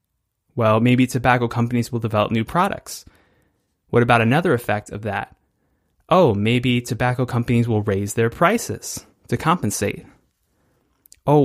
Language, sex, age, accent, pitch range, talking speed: English, male, 20-39, American, 105-125 Hz, 130 wpm